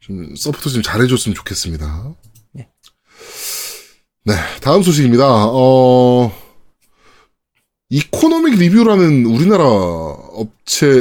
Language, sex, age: Korean, male, 20-39